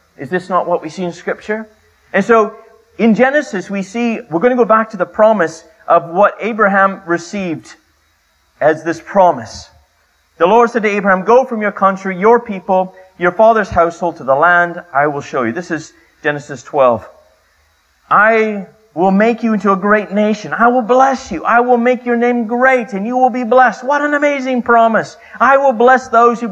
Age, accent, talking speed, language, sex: 30-49, American, 195 wpm, English, male